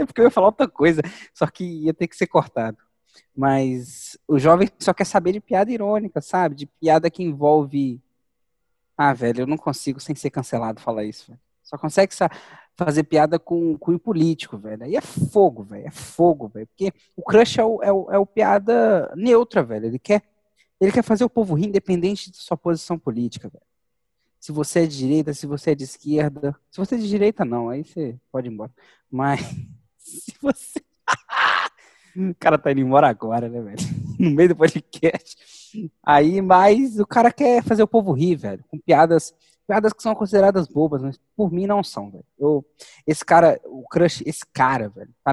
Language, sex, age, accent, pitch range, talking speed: Portuguese, male, 20-39, Brazilian, 135-185 Hz, 190 wpm